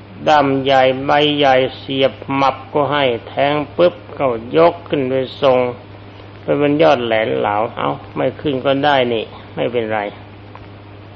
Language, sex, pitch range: Thai, male, 100-150 Hz